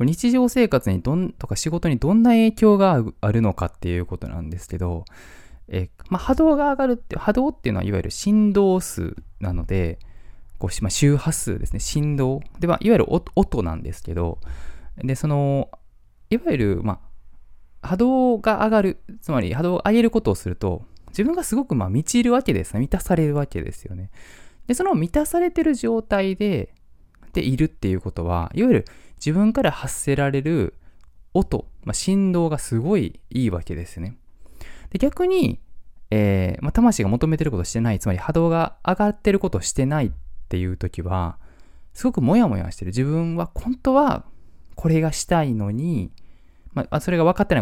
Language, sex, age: Japanese, male, 20-39